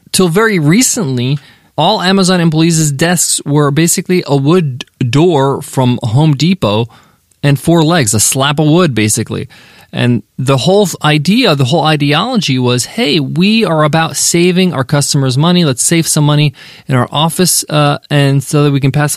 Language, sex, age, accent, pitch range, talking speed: English, male, 20-39, American, 130-180 Hz, 165 wpm